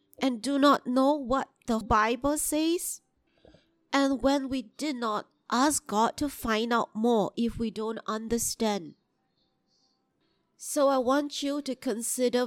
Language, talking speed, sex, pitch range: English, 140 wpm, female, 225-280 Hz